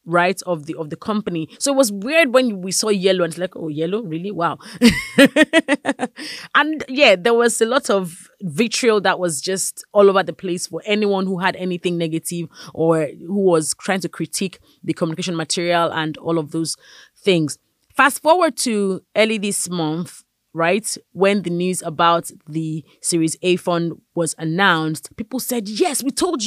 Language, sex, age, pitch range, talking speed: English, female, 30-49, 175-285 Hz, 175 wpm